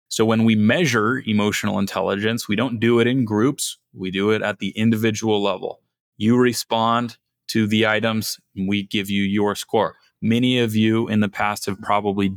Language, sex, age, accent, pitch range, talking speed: English, male, 30-49, American, 100-115 Hz, 185 wpm